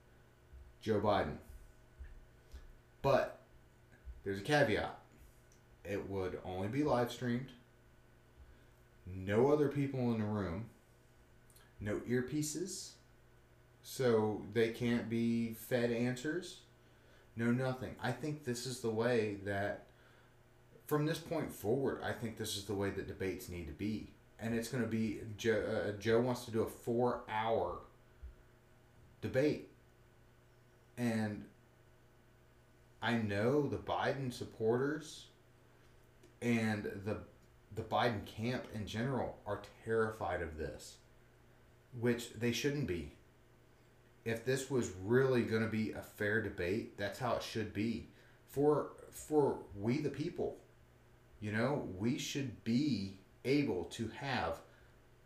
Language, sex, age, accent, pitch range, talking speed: English, male, 30-49, American, 105-125 Hz, 120 wpm